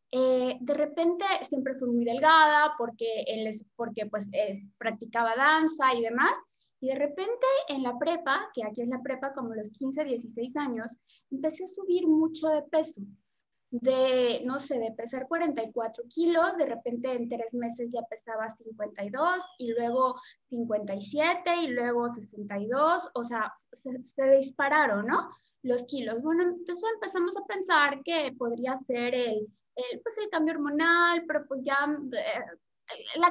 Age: 20-39